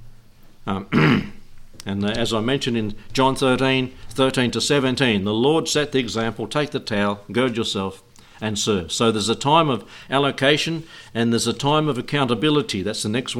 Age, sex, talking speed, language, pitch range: 60-79, male, 170 wpm, English, 110-135 Hz